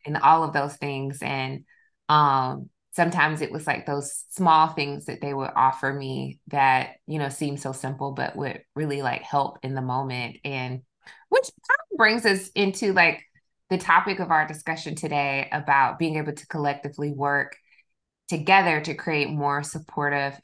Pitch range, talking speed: 140-160 Hz, 165 wpm